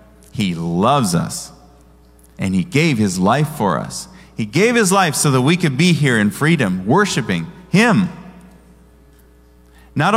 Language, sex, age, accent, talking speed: English, male, 40-59, American, 150 wpm